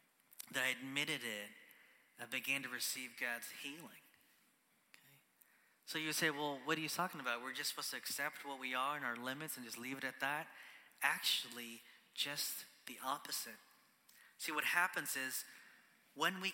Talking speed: 165 wpm